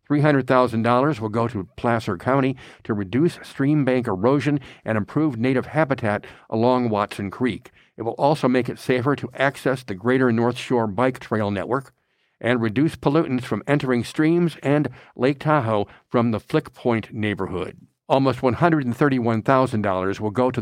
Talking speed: 150 wpm